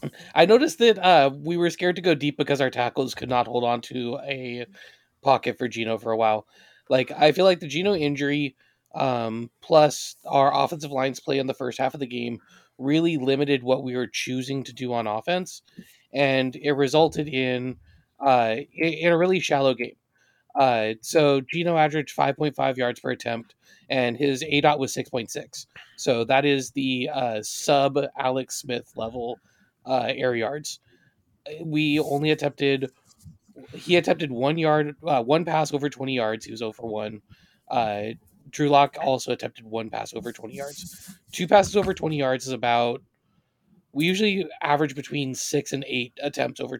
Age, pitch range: 20-39, 125-150 Hz